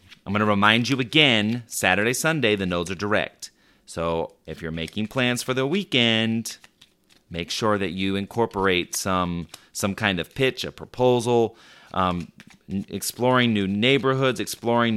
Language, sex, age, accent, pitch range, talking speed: English, male, 30-49, American, 85-120 Hz, 150 wpm